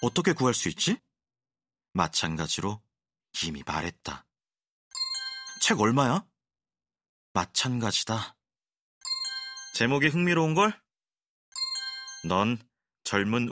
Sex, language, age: male, Korean, 30-49